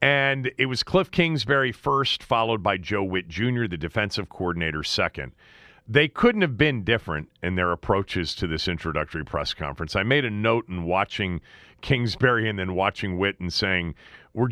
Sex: male